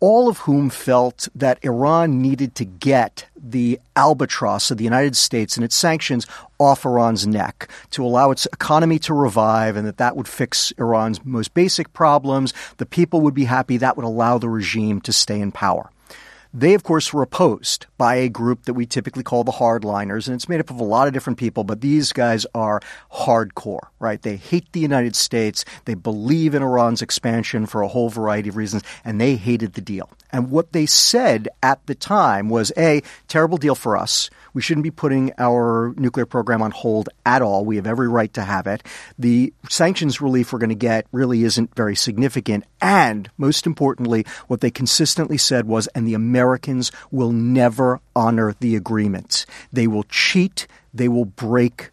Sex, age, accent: male, 40-59, American